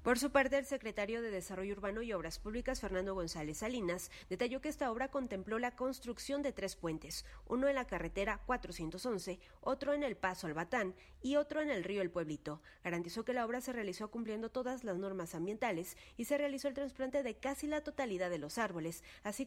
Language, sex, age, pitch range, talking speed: Spanish, female, 30-49, 185-260 Hz, 205 wpm